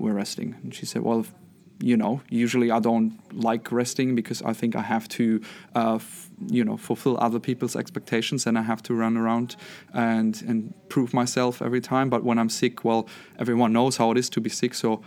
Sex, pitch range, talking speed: male, 120-155 Hz, 215 wpm